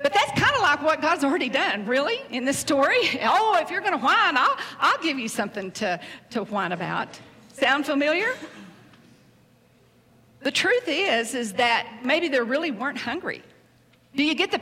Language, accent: English, American